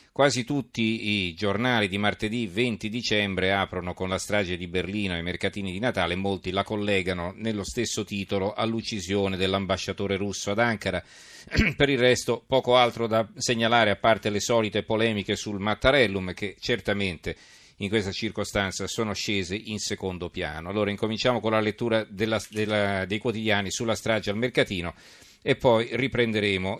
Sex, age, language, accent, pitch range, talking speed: male, 40-59, Italian, native, 100-115 Hz, 150 wpm